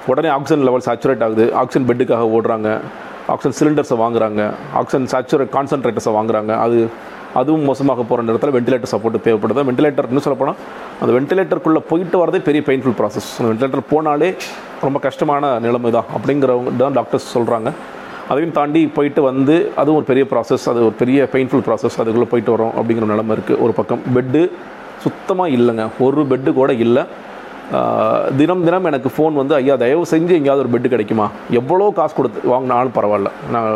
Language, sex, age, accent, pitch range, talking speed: Tamil, male, 40-59, native, 115-145 Hz, 160 wpm